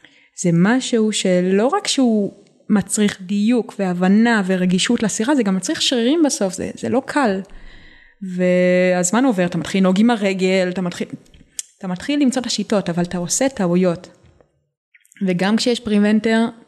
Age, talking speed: 20-39, 145 wpm